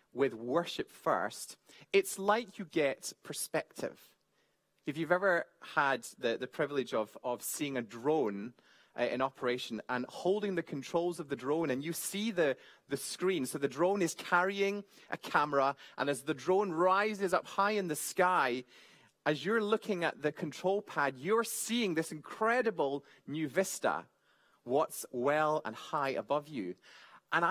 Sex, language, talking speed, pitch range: male, English, 160 wpm, 145-200 Hz